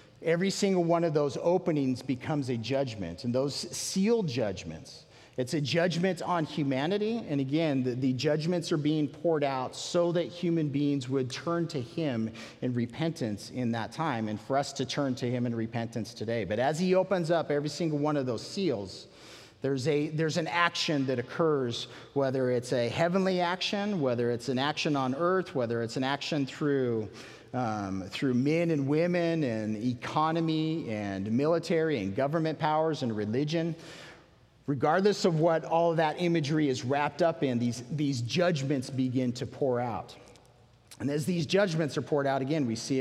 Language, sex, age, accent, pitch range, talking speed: English, male, 40-59, American, 120-160 Hz, 175 wpm